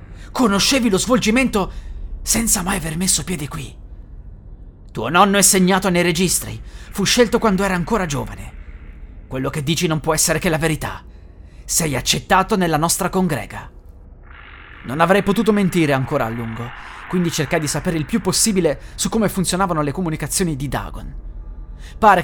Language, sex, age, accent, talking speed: Italian, male, 30-49, native, 155 wpm